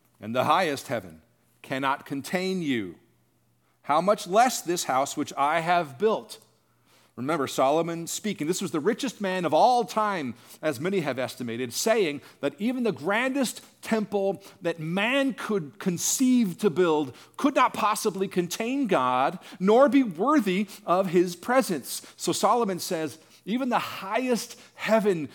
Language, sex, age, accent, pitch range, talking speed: English, male, 40-59, American, 150-225 Hz, 145 wpm